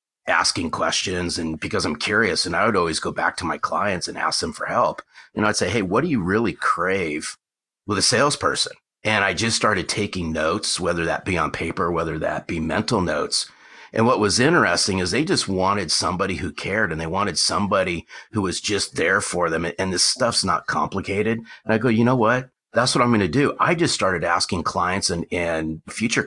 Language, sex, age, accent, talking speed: English, male, 40-59, American, 215 wpm